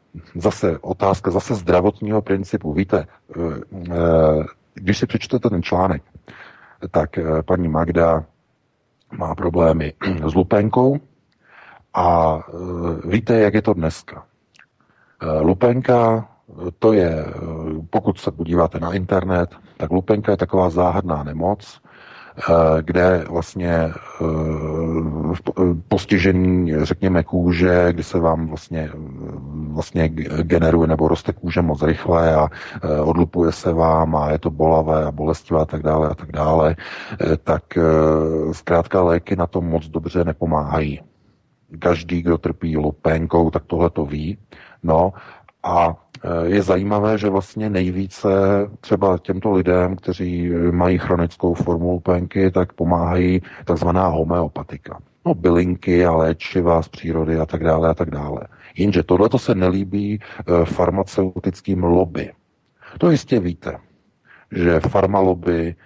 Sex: male